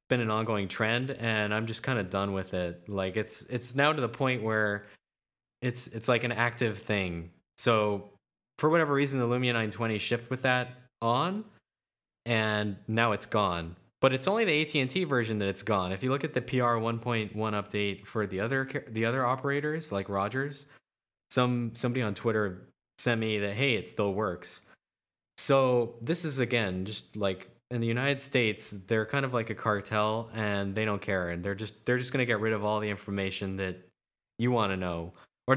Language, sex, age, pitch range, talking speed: English, male, 20-39, 105-130 Hz, 195 wpm